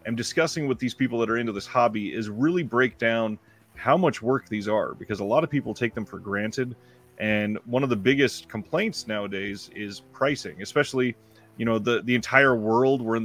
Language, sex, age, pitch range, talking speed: English, male, 30-49, 110-130 Hz, 205 wpm